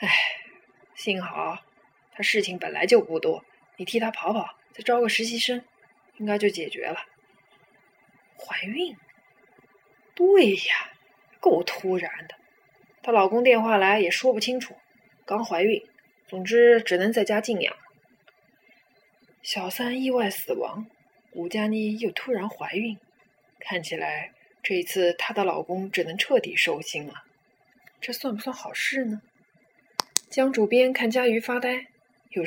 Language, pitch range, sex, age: Chinese, 195-250 Hz, female, 20-39